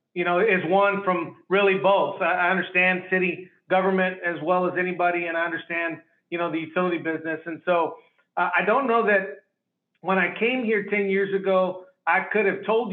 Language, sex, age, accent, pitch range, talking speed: English, male, 40-59, American, 170-190 Hz, 190 wpm